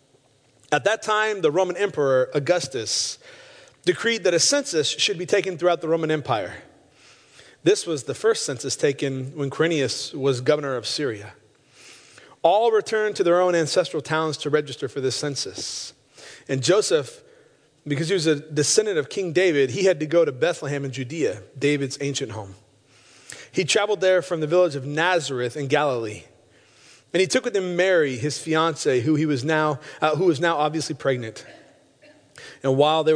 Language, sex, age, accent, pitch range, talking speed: English, male, 30-49, American, 145-180 Hz, 170 wpm